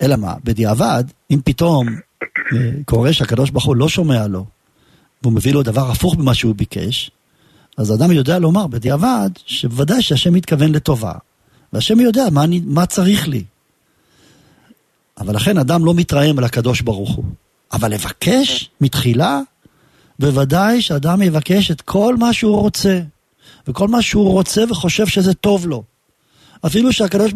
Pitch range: 125-180 Hz